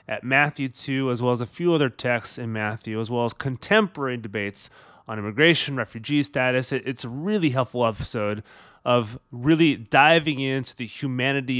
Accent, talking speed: American, 165 wpm